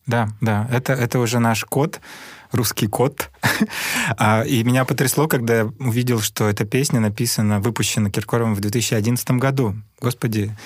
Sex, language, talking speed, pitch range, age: male, Russian, 140 wpm, 105-125 Hz, 20-39